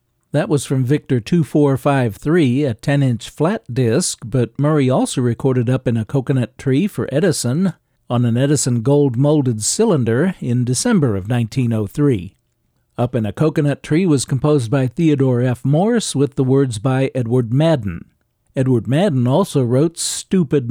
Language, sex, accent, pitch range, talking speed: English, male, American, 125-155 Hz, 150 wpm